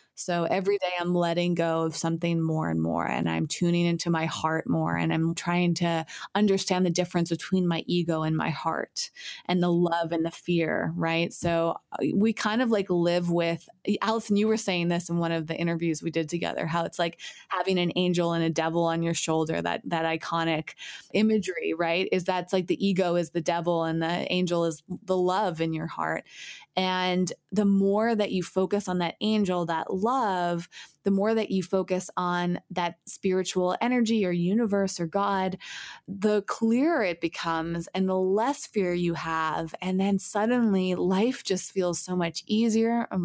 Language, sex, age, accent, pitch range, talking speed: English, female, 20-39, American, 170-200 Hz, 190 wpm